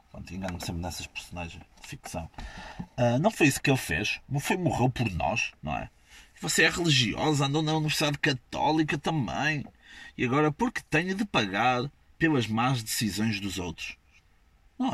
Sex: male